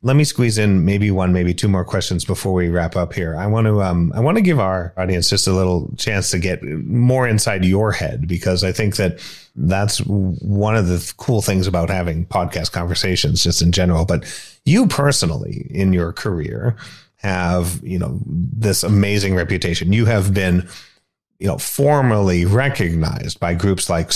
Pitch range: 90-105 Hz